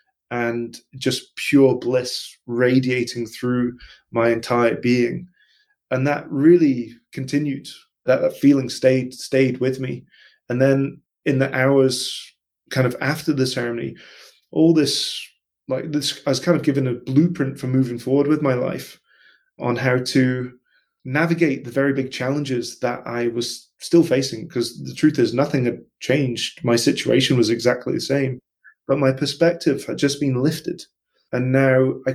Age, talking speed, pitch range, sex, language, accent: 20-39, 155 wpm, 125-145 Hz, male, English, British